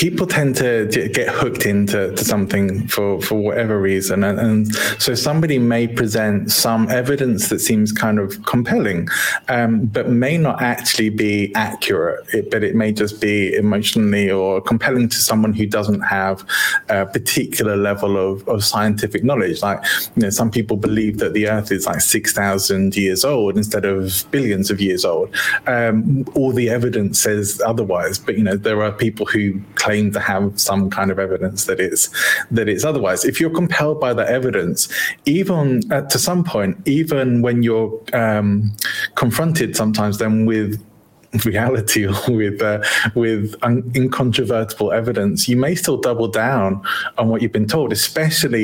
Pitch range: 105-120 Hz